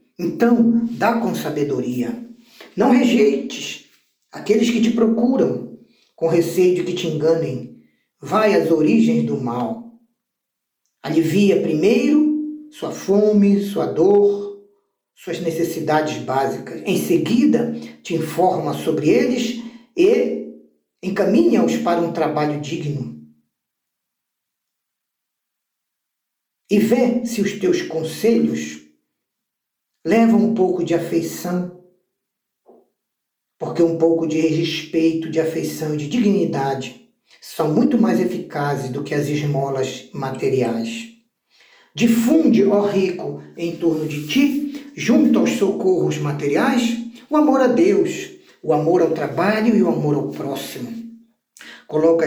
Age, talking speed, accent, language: 50-69, 110 wpm, Brazilian, Portuguese